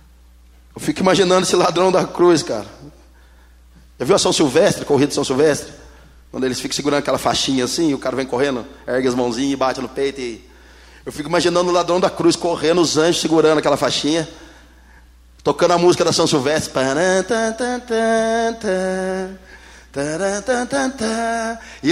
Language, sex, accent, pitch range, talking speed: Portuguese, male, Brazilian, 130-215 Hz, 150 wpm